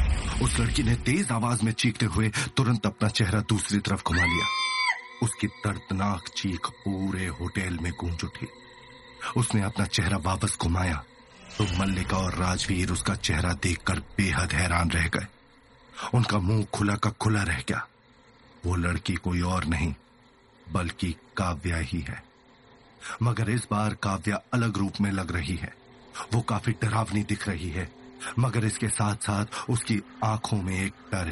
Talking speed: 155 wpm